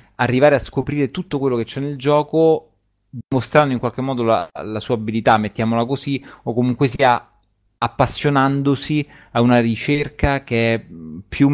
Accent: native